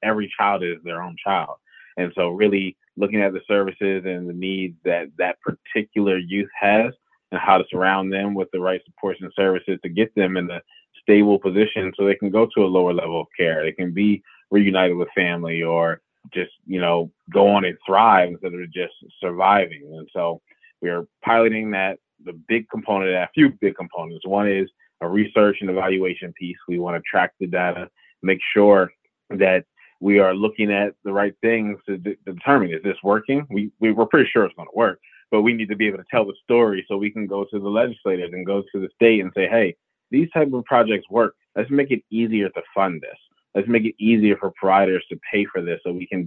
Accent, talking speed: American, 220 wpm